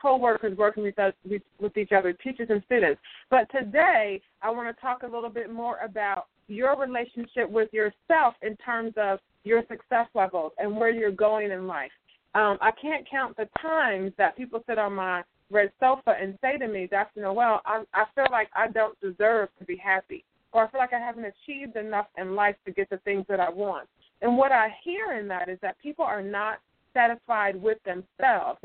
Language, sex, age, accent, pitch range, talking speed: English, female, 30-49, American, 205-255 Hz, 200 wpm